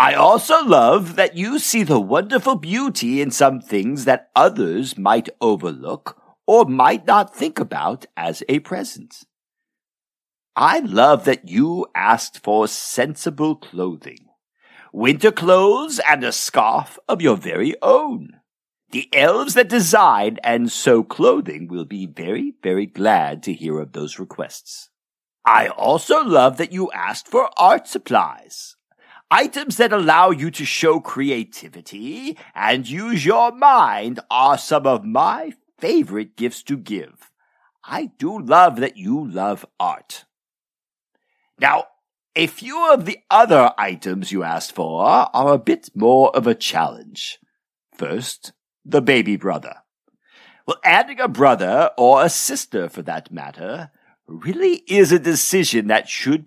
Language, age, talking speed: English, 50-69, 140 wpm